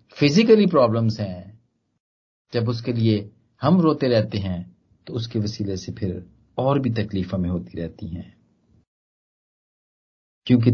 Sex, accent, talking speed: male, native, 130 wpm